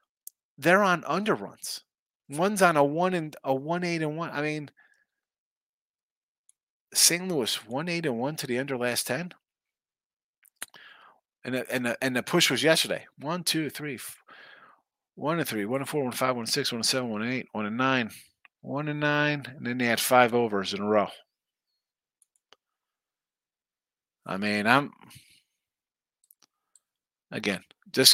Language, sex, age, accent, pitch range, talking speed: English, male, 40-59, American, 120-160 Hz, 170 wpm